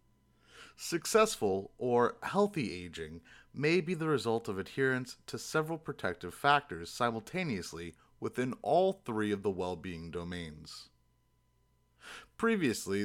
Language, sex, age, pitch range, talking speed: English, male, 30-49, 90-130 Hz, 105 wpm